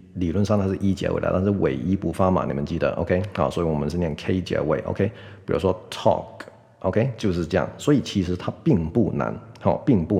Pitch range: 90-110 Hz